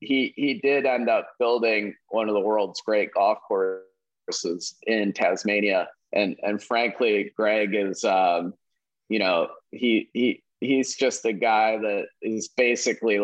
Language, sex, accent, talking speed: English, male, American, 145 wpm